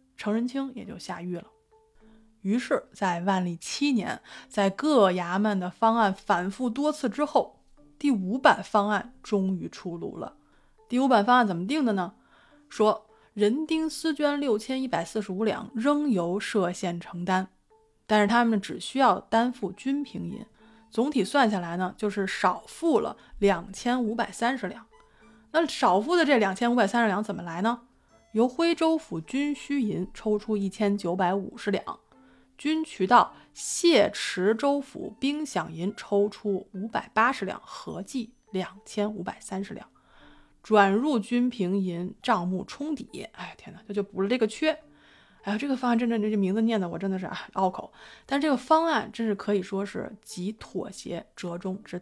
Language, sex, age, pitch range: Chinese, female, 20-39, 195-255 Hz